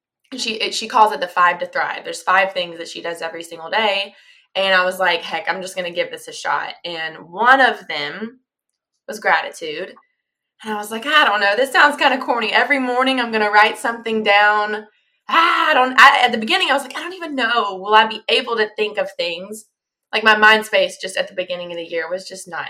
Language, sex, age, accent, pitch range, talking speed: English, female, 20-39, American, 180-235 Hz, 245 wpm